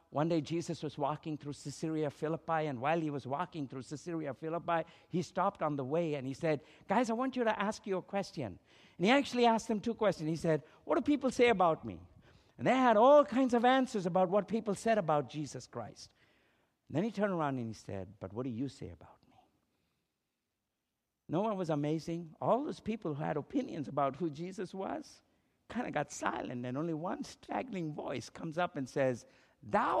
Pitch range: 155-260 Hz